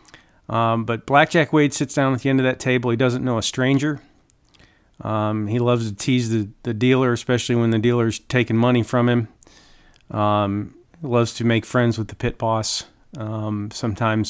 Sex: male